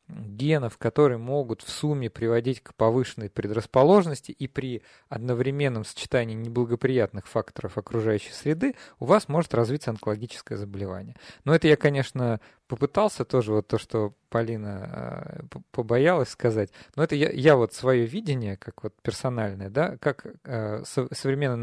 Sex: male